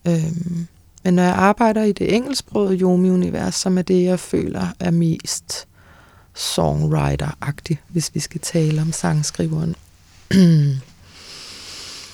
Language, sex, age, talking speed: Danish, female, 20-39, 130 wpm